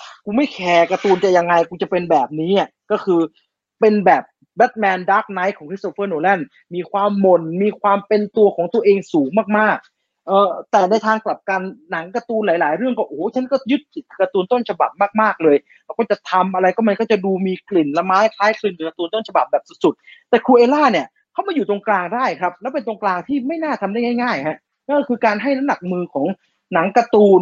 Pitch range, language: 185-240 Hz, English